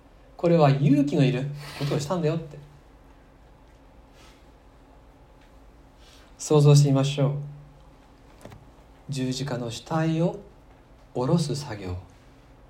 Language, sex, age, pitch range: Japanese, male, 40-59, 140-175 Hz